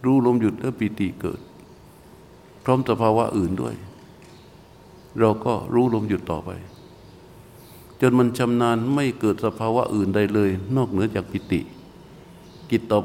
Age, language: 60-79, Thai